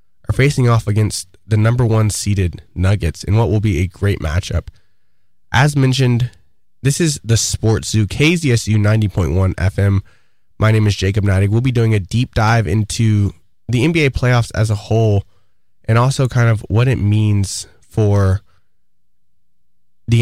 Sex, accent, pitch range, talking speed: male, American, 95-120 Hz, 155 wpm